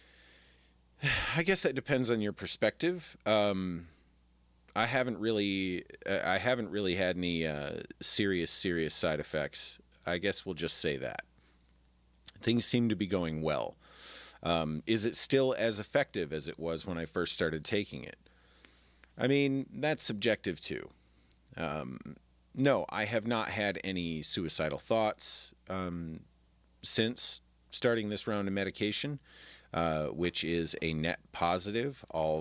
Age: 40-59